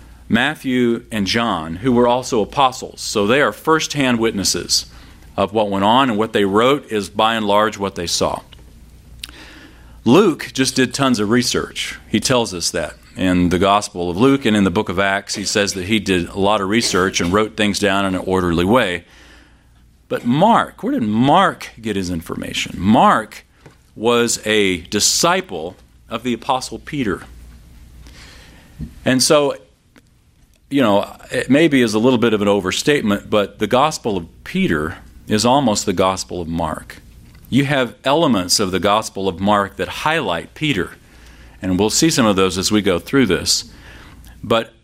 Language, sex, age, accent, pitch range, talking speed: English, male, 40-59, American, 85-120 Hz, 170 wpm